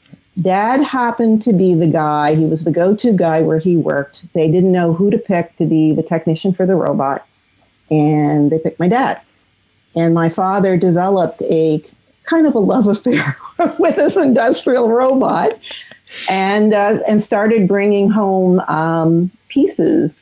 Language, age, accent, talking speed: English, 50-69, American, 160 wpm